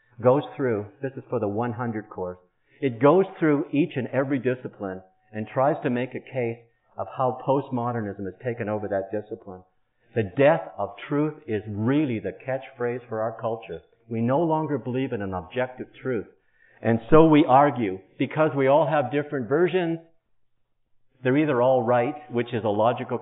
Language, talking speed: English, 170 wpm